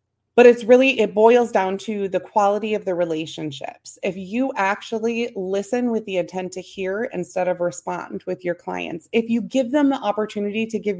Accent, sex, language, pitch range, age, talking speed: American, female, English, 180-225 Hz, 30-49, 190 wpm